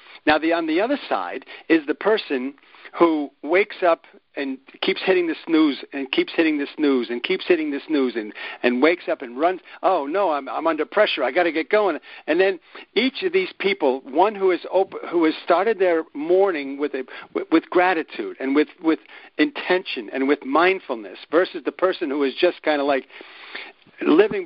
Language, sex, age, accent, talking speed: English, male, 50-69, American, 200 wpm